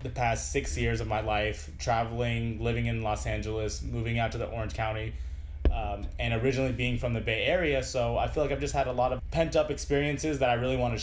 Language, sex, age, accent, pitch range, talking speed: English, male, 20-39, American, 95-125 Hz, 235 wpm